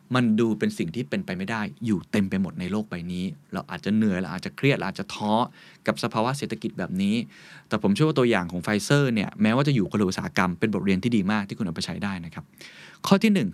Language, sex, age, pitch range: Thai, male, 20-39, 100-155 Hz